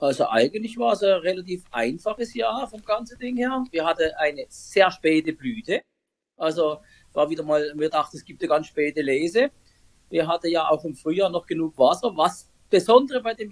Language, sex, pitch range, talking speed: German, male, 165-225 Hz, 190 wpm